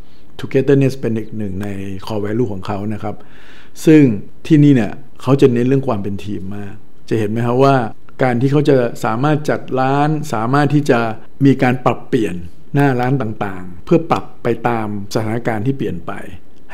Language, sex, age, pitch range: Thai, male, 60-79, 105-130 Hz